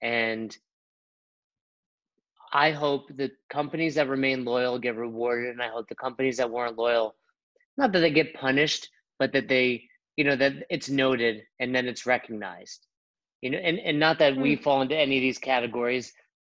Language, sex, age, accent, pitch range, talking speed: English, male, 30-49, American, 125-150 Hz, 175 wpm